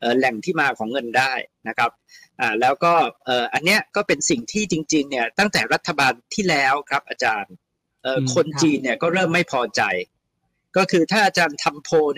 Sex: male